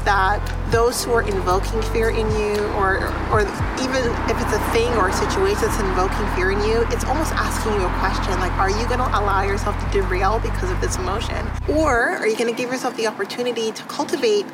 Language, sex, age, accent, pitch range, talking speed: English, female, 30-49, American, 210-260 Hz, 215 wpm